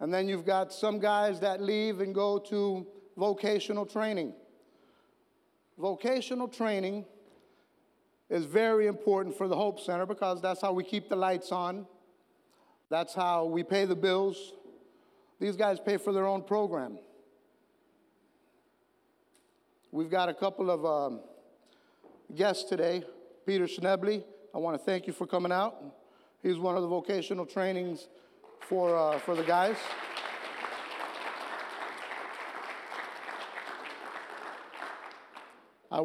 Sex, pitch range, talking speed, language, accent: male, 180-210 Hz, 120 wpm, English, American